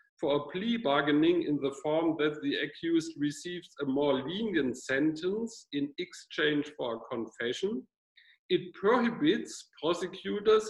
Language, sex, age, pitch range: English, male, 50-69, 145-245 Hz